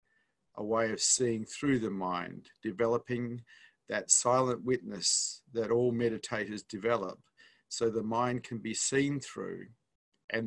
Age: 50-69